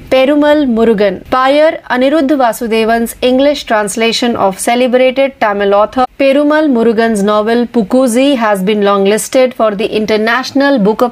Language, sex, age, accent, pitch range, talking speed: Marathi, female, 30-49, native, 215-275 Hz, 125 wpm